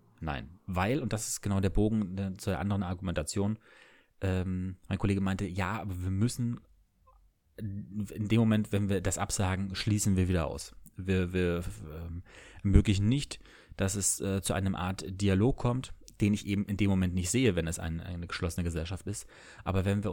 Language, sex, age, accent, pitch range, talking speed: German, male, 30-49, German, 90-100 Hz, 180 wpm